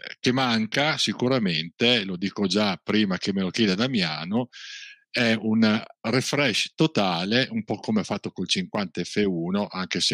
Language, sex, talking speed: Italian, male, 155 wpm